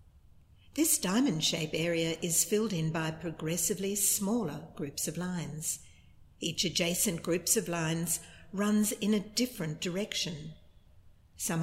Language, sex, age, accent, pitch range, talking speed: English, female, 60-79, Australian, 160-205 Hz, 125 wpm